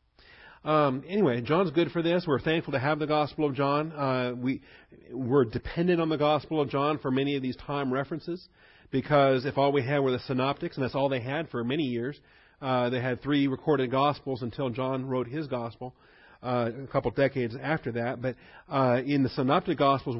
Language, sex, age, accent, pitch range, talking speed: English, male, 40-59, American, 120-145 Hz, 200 wpm